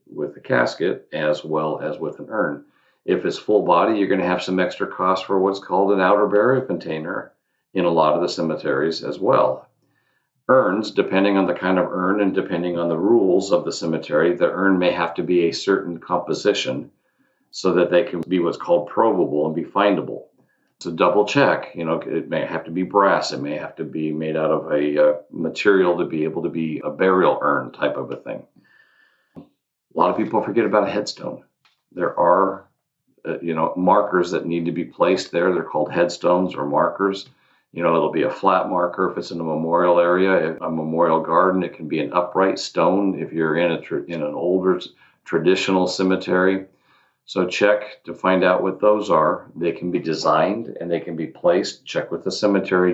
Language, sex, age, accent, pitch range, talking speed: English, male, 50-69, American, 85-95 Hz, 205 wpm